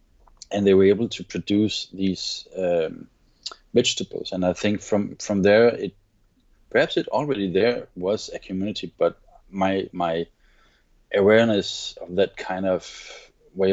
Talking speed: 140 wpm